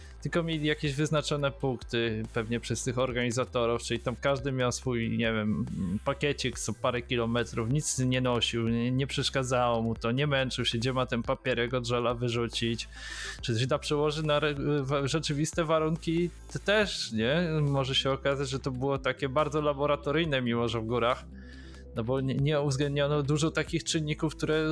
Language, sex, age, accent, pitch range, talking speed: Polish, male, 20-39, native, 120-150 Hz, 165 wpm